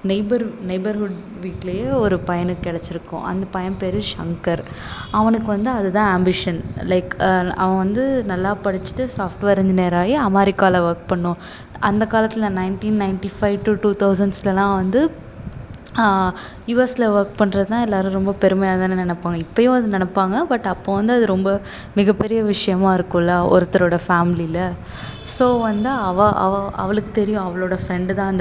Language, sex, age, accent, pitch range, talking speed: Tamil, female, 20-39, native, 180-210 Hz, 135 wpm